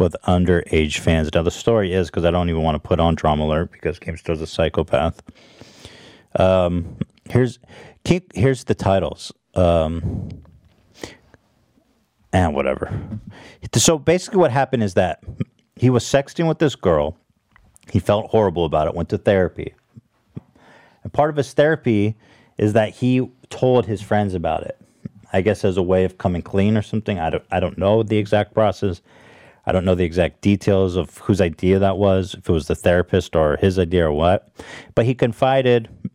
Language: English